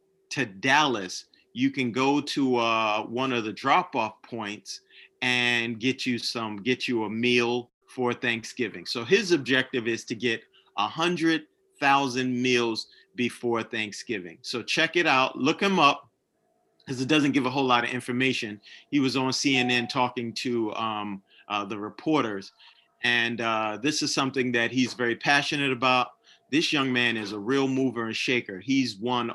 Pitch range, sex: 115-140 Hz, male